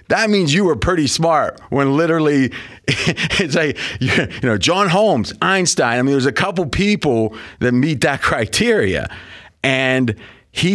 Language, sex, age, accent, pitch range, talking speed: English, male, 30-49, American, 105-135 Hz, 150 wpm